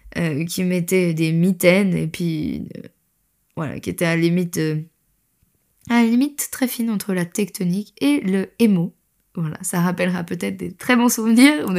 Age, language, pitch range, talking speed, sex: 20-39, French, 175-215 Hz, 180 wpm, female